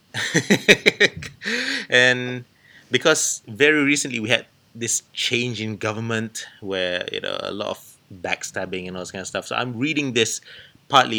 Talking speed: 150 wpm